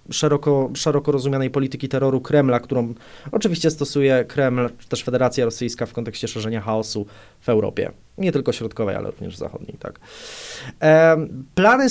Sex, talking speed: male, 135 wpm